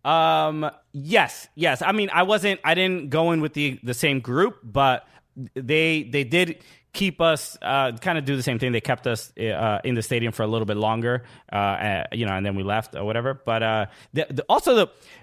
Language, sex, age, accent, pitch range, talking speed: English, male, 20-39, American, 130-185 Hz, 225 wpm